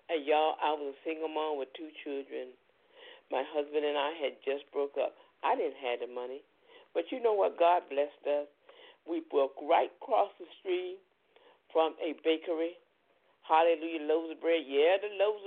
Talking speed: 180 wpm